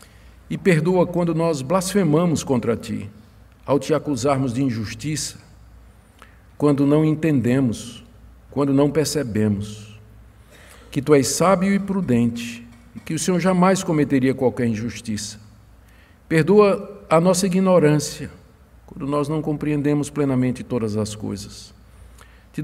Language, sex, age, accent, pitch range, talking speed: Portuguese, male, 50-69, Brazilian, 110-165 Hz, 115 wpm